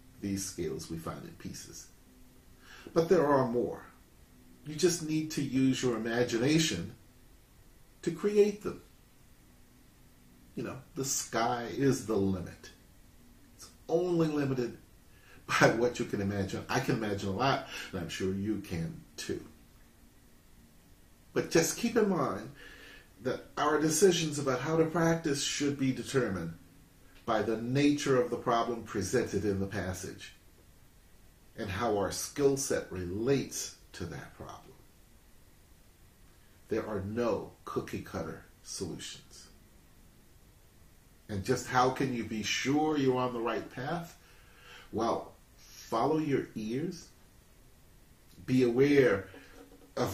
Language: English